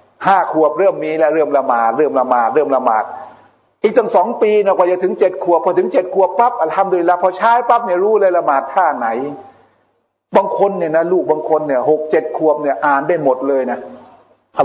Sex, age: male, 60-79